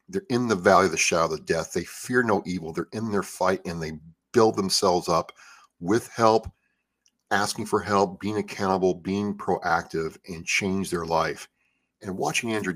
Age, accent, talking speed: 50-69, American, 185 wpm